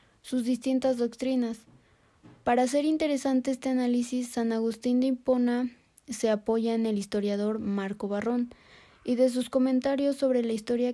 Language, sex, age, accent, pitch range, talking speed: Spanish, female, 20-39, Mexican, 220-255 Hz, 145 wpm